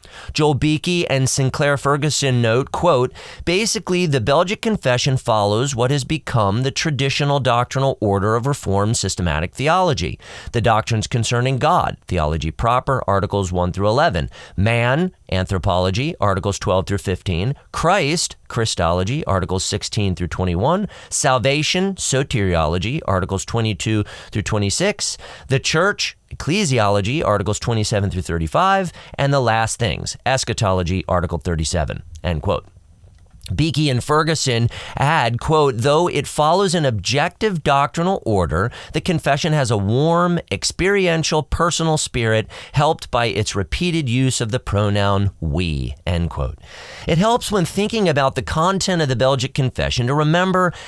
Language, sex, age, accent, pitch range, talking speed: English, male, 40-59, American, 100-155 Hz, 130 wpm